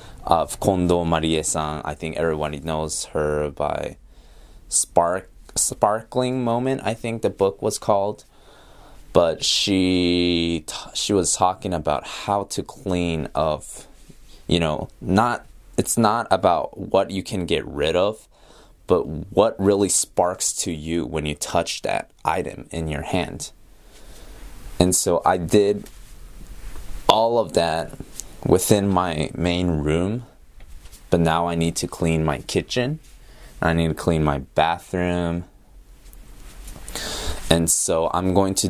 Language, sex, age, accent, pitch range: Japanese, male, 20-39, American, 80-100 Hz